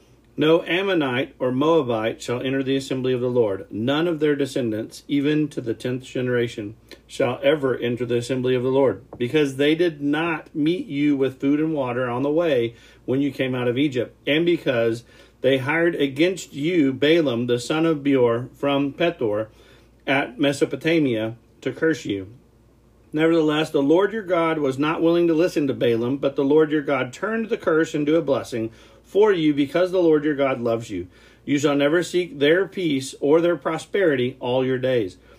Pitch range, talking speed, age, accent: 125-165 Hz, 185 wpm, 50-69, American